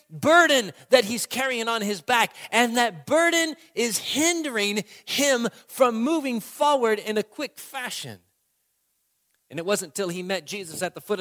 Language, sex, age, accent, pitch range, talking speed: English, male, 40-59, American, 185-265 Hz, 160 wpm